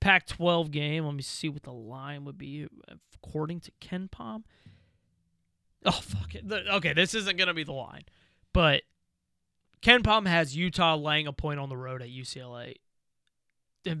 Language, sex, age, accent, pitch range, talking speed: English, male, 20-39, American, 140-200 Hz, 170 wpm